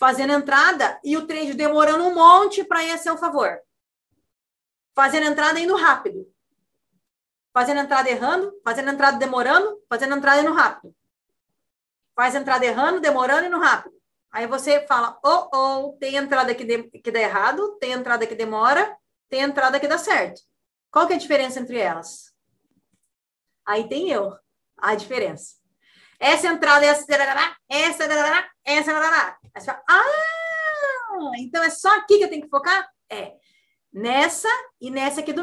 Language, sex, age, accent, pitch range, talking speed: Portuguese, female, 30-49, Brazilian, 270-335 Hz, 160 wpm